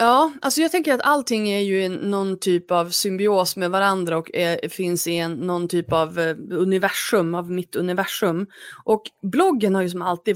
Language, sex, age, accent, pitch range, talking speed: Swedish, female, 20-39, native, 175-220 Hz, 175 wpm